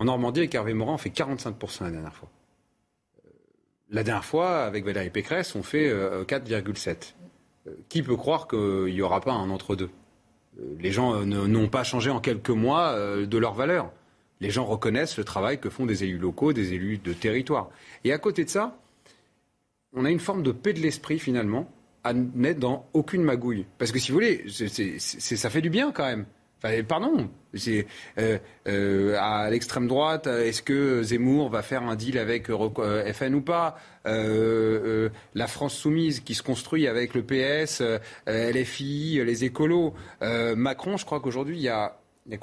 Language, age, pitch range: French, 30-49, 105-145 Hz